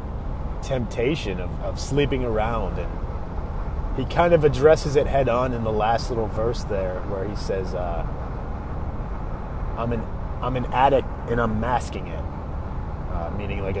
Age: 30-49